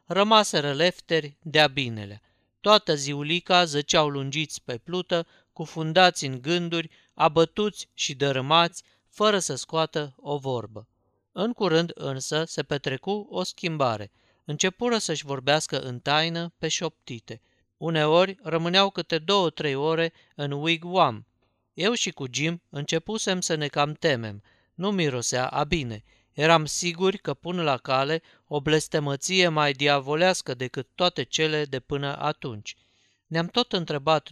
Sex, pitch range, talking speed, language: male, 140-175 Hz, 130 wpm, Romanian